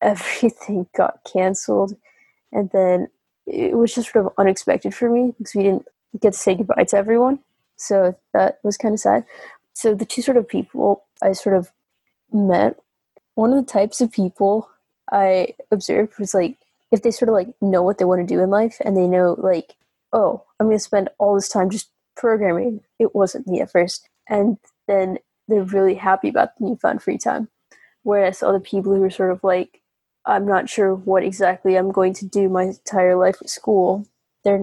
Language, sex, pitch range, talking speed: English, female, 190-225 Hz, 195 wpm